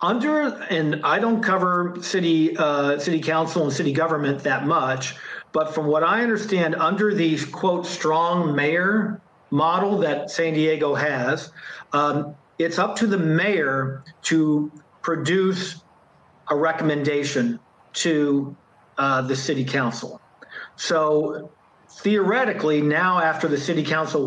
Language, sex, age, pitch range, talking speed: English, male, 50-69, 145-170 Hz, 125 wpm